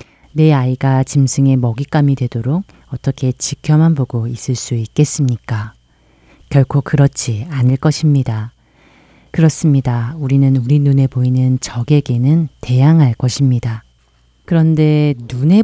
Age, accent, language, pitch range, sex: 30-49, native, Korean, 125-155 Hz, female